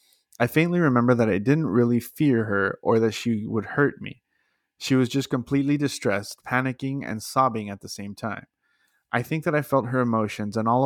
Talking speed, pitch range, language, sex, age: 200 wpm, 110-135 Hz, English, male, 20-39